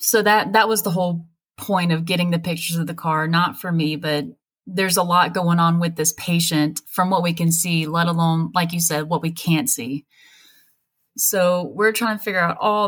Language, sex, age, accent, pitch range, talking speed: English, female, 20-39, American, 165-200 Hz, 220 wpm